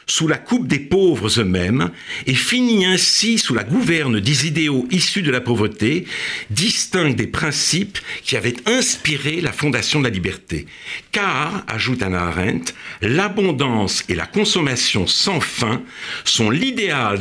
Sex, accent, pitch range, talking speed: male, French, 105-165 Hz, 145 wpm